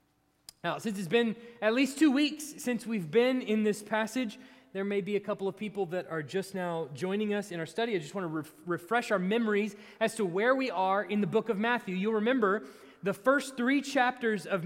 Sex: male